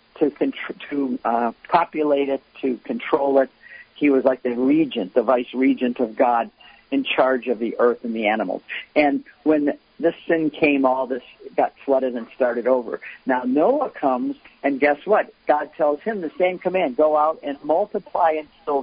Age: 50-69